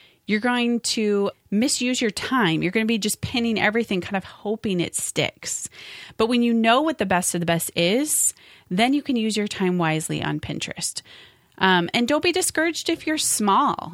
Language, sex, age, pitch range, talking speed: English, female, 30-49, 170-230 Hz, 195 wpm